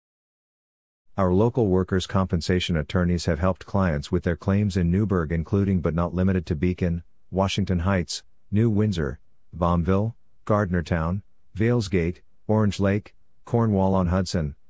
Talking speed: 120 wpm